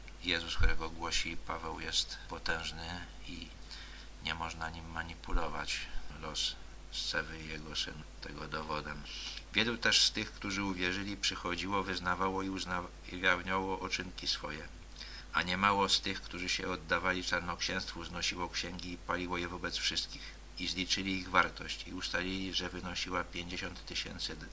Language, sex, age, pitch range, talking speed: Polish, male, 50-69, 80-90 Hz, 135 wpm